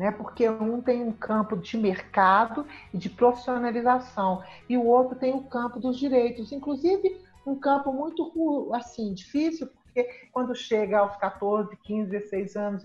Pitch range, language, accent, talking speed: 200-245 Hz, Portuguese, Brazilian, 145 wpm